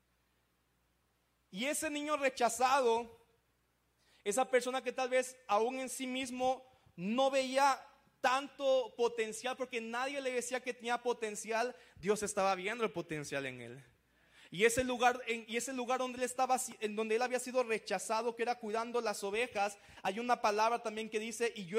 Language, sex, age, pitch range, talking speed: Spanish, male, 30-49, 185-250 Hz, 150 wpm